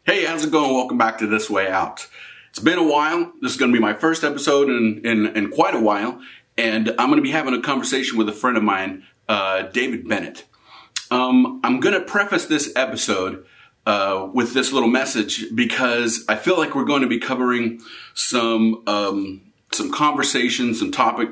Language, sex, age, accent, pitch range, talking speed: English, male, 40-59, American, 105-130 Hz, 200 wpm